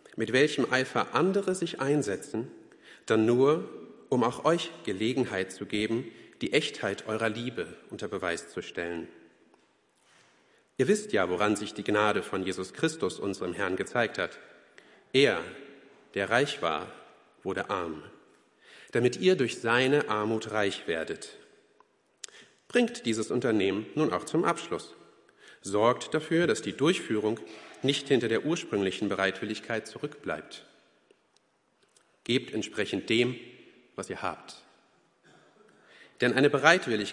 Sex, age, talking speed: male, 40-59, 125 wpm